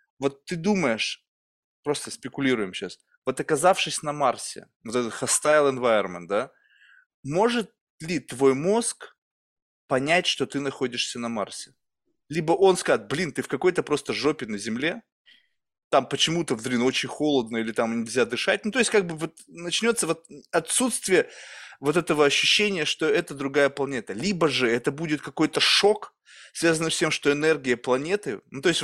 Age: 20-39